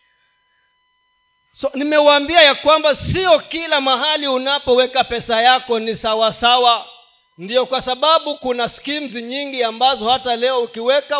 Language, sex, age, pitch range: Swahili, male, 40-59, 185-305 Hz